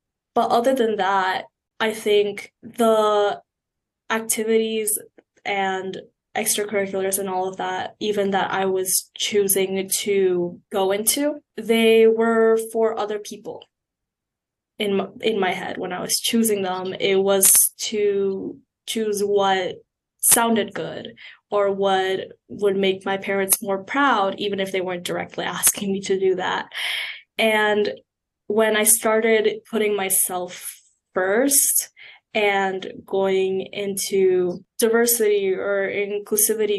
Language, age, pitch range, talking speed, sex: English, 10-29, 190-220 Hz, 120 wpm, female